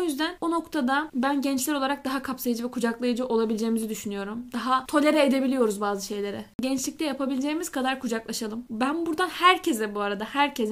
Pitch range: 230-280 Hz